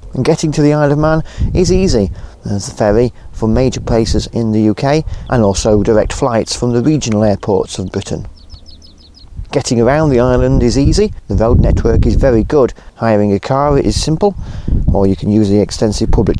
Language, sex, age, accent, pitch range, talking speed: English, male, 40-59, British, 100-130 Hz, 190 wpm